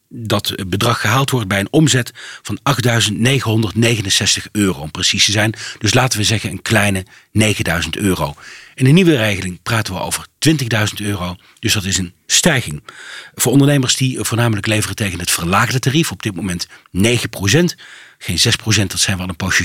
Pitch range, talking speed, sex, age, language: 100-130 Hz, 175 wpm, male, 40-59, Dutch